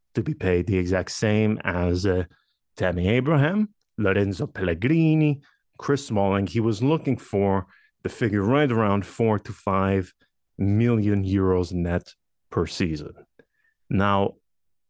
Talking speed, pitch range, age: 125 wpm, 95-140 Hz, 30-49